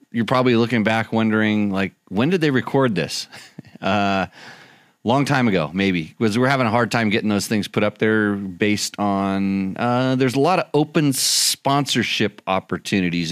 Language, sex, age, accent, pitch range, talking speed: English, male, 30-49, American, 105-135 Hz, 170 wpm